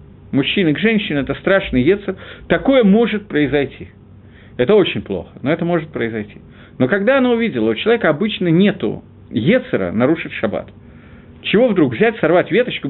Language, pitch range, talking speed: Russian, 130-200 Hz, 150 wpm